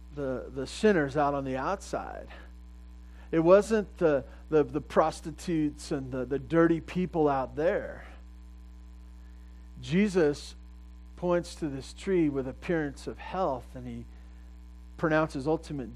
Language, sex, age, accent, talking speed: English, male, 40-59, American, 125 wpm